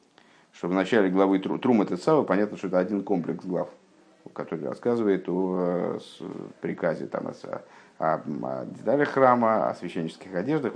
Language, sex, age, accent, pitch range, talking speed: Russian, male, 50-69, native, 90-110 Hz, 150 wpm